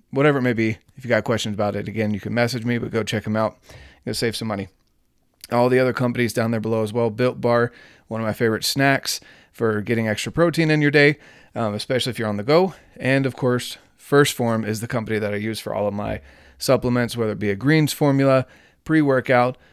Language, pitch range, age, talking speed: English, 105-135 Hz, 30-49, 235 wpm